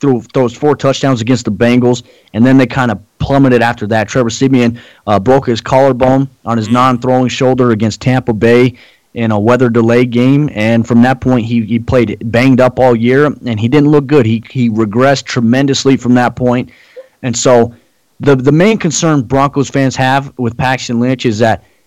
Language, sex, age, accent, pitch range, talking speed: English, male, 30-49, American, 110-130 Hz, 190 wpm